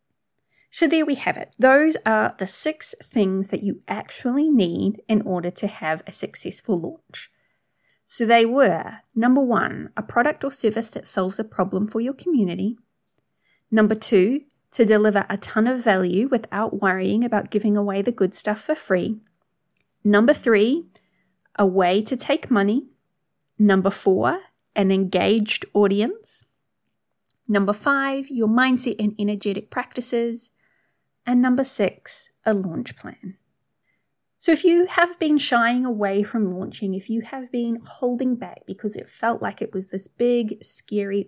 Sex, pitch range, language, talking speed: female, 195-255 Hz, English, 150 wpm